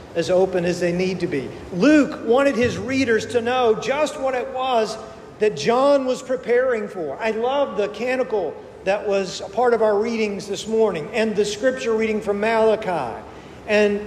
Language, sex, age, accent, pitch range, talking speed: English, male, 50-69, American, 200-240 Hz, 180 wpm